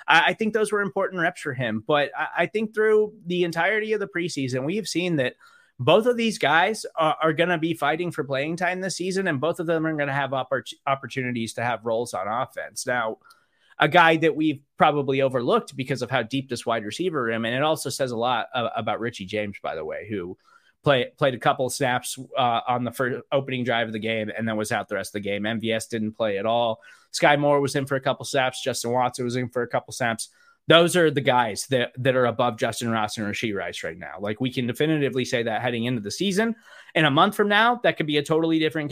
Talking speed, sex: 240 wpm, male